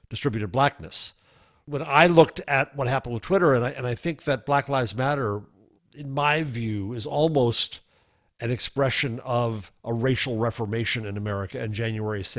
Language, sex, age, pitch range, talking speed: English, male, 50-69, 110-140 Hz, 165 wpm